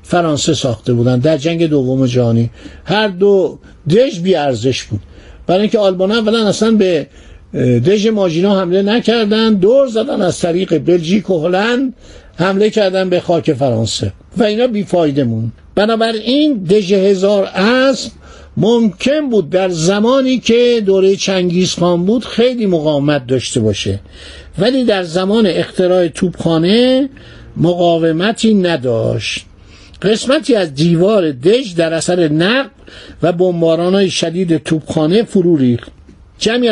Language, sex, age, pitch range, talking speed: Persian, male, 60-79, 155-215 Hz, 125 wpm